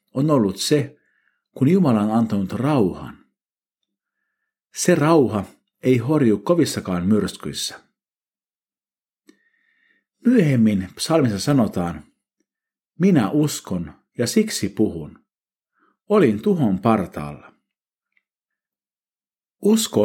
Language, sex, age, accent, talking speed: Finnish, male, 50-69, native, 80 wpm